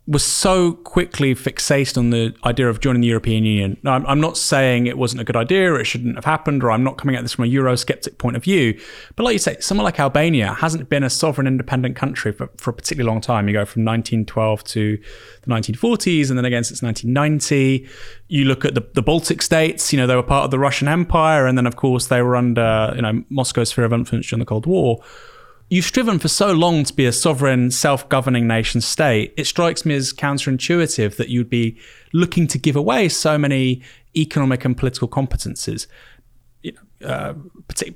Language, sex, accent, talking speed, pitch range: English, male, British, 210 wpm, 120-165 Hz